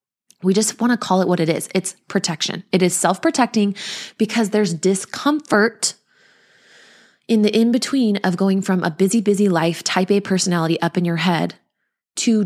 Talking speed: 170 wpm